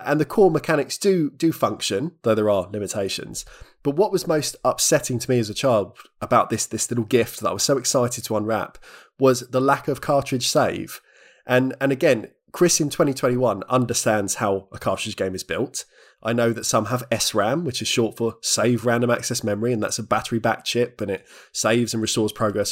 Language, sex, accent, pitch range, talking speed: English, male, British, 115-140 Hz, 205 wpm